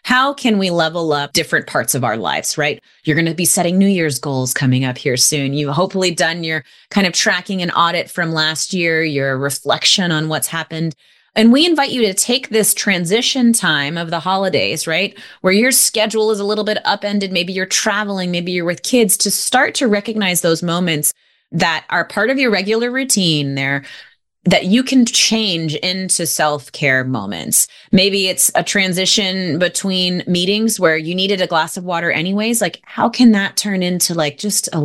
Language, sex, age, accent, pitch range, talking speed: English, female, 30-49, American, 155-205 Hz, 195 wpm